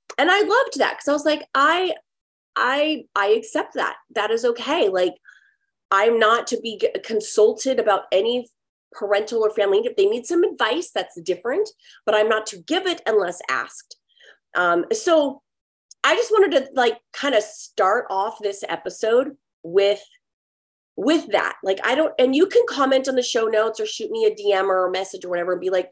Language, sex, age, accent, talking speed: English, female, 30-49, American, 190 wpm